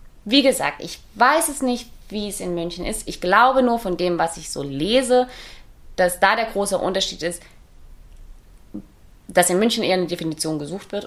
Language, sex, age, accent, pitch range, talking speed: German, female, 20-39, German, 175-240 Hz, 185 wpm